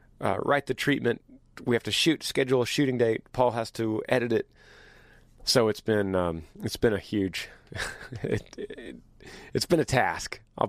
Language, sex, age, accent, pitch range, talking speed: English, male, 30-49, American, 100-125 Hz, 170 wpm